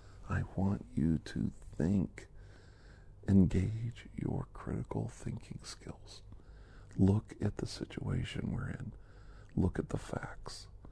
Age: 50-69